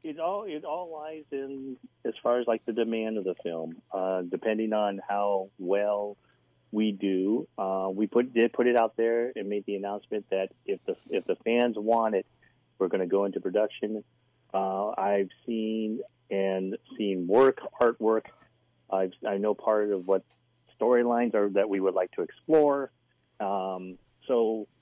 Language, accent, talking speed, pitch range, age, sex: English, American, 170 wpm, 100-120 Hz, 40-59, male